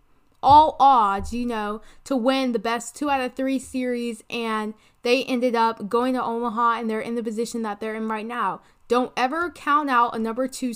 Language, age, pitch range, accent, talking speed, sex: English, 20-39, 220-260 Hz, American, 205 wpm, female